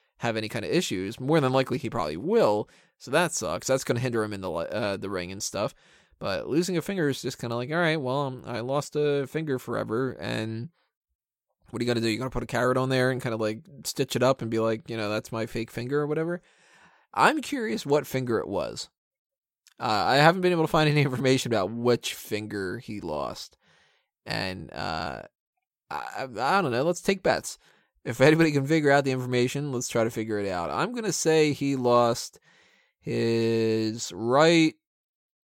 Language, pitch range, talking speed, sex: English, 115-155 Hz, 215 wpm, male